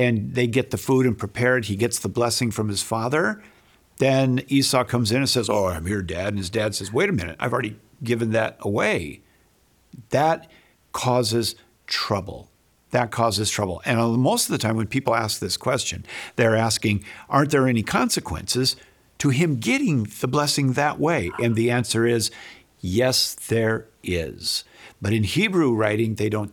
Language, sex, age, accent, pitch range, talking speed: English, male, 50-69, American, 100-130 Hz, 175 wpm